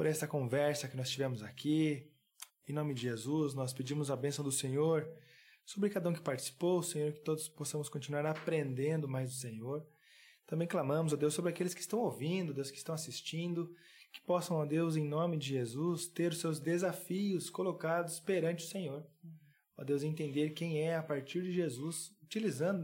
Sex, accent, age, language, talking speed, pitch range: male, Brazilian, 20-39, Portuguese, 185 wpm, 140-175 Hz